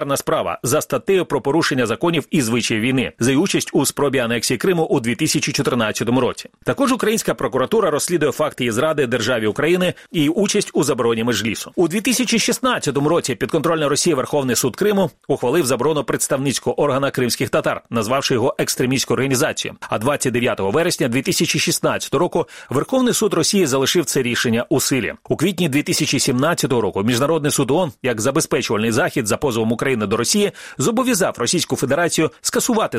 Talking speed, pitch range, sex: 150 wpm, 130-185 Hz, male